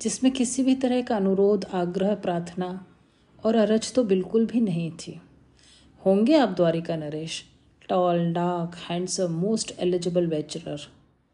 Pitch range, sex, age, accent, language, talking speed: 170-220 Hz, female, 40-59, native, Hindi, 140 wpm